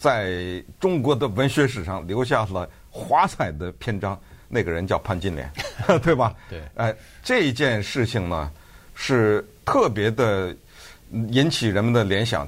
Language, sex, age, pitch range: Chinese, male, 50-69, 100-145 Hz